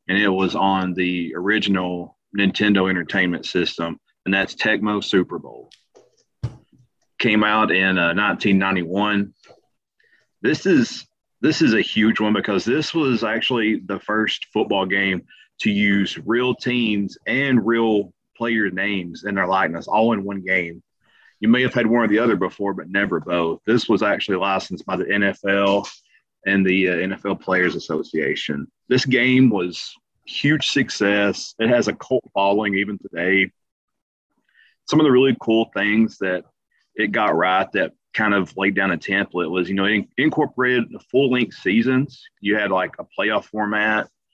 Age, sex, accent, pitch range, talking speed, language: 30-49, male, American, 95-115 Hz, 155 wpm, English